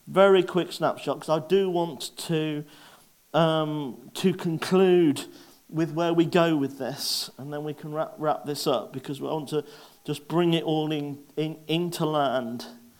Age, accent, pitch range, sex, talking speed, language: 40-59, British, 140-175 Hz, male, 170 wpm, English